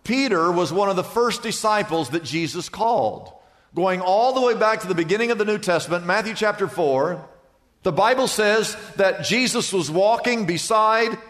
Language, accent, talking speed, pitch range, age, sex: English, American, 175 wpm, 185-235 Hz, 50-69, male